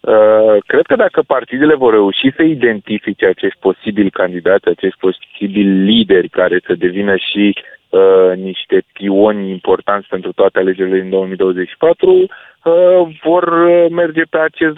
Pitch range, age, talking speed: 95-150 Hz, 20-39, 135 wpm